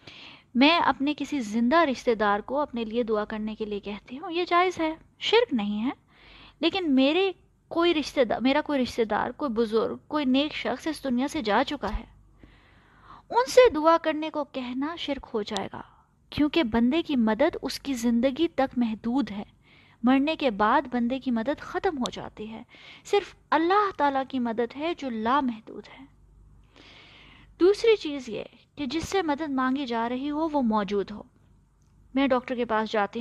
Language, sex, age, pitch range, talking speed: Urdu, female, 20-39, 235-320 Hz, 175 wpm